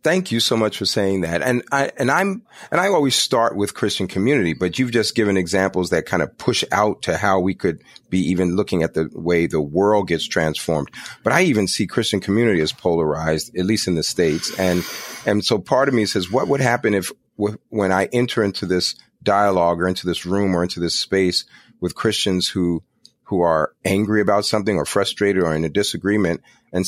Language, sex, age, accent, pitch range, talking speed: English, male, 40-59, American, 90-110 Hz, 215 wpm